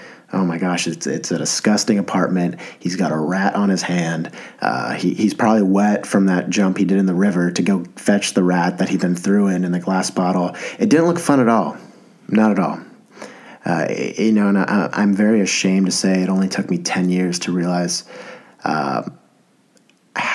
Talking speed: 205 wpm